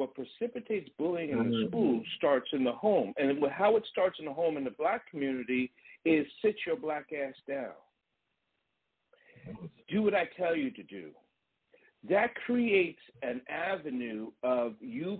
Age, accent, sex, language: 50-69, American, male, English